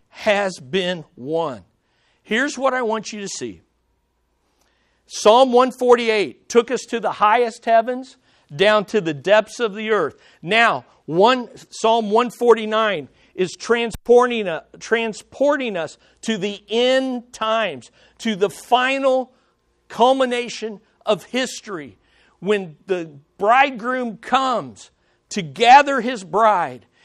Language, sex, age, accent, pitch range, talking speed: English, male, 50-69, American, 175-245 Hz, 125 wpm